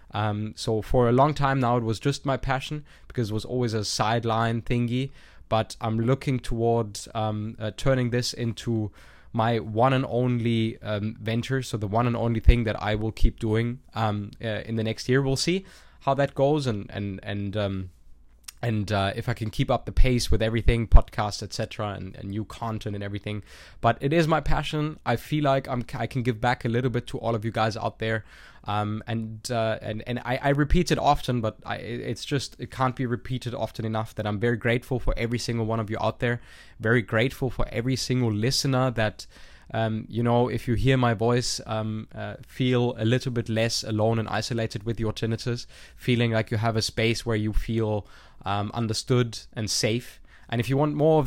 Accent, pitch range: German, 110-125 Hz